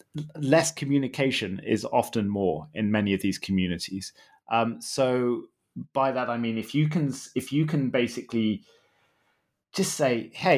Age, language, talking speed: 30-49, English, 145 wpm